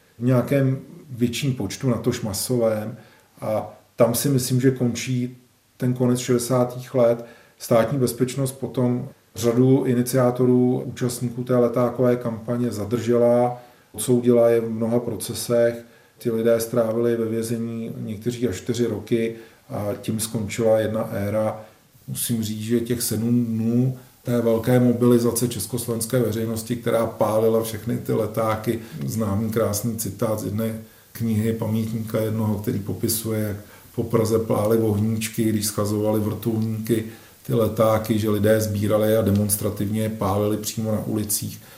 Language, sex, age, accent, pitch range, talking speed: Czech, male, 40-59, native, 110-120 Hz, 130 wpm